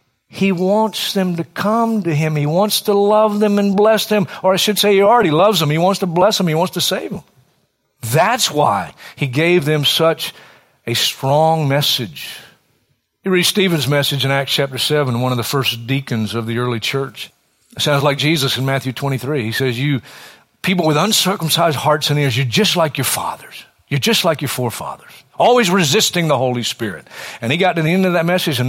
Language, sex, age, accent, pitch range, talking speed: English, male, 50-69, American, 130-180 Hz, 210 wpm